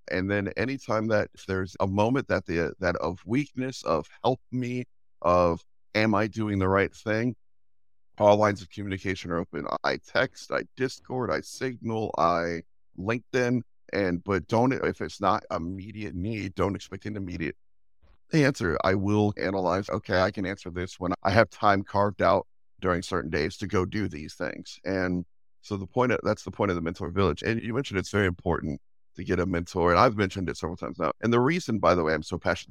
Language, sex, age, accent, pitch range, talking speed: English, male, 50-69, American, 90-105 Hz, 200 wpm